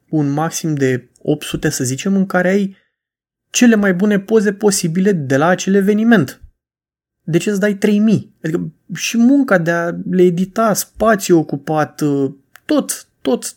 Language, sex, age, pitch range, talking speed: Romanian, male, 20-39, 150-195 Hz, 155 wpm